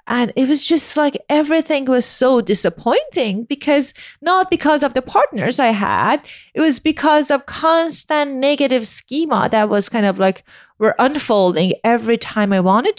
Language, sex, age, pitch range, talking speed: English, female, 30-49, 190-265 Hz, 160 wpm